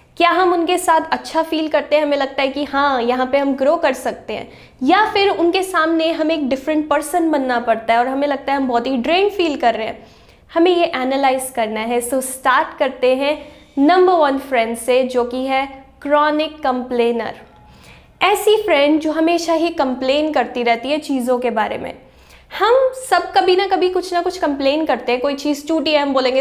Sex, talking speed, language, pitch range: female, 210 wpm, Hindi, 270-330 Hz